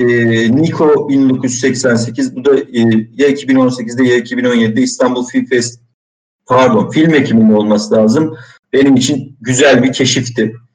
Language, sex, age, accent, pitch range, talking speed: Turkish, male, 50-69, native, 115-140 Hz, 125 wpm